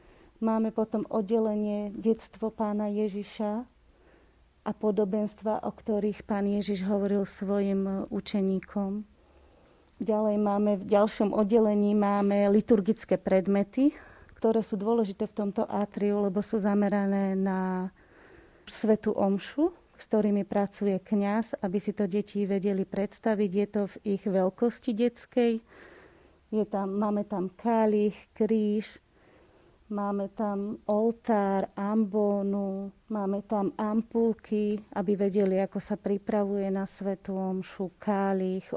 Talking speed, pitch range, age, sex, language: 110 wpm, 200-215 Hz, 30-49, female, Slovak